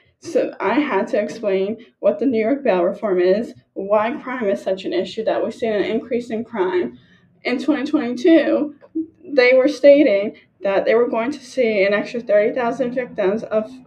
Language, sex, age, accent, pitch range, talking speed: English, female, 10-29, American, 205-285 Hz, 175 wpm